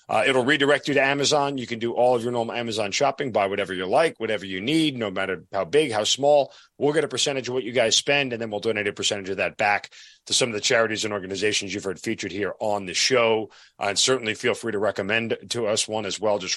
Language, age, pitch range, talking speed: English, 40-59, 105-135 Hz, 265 wpm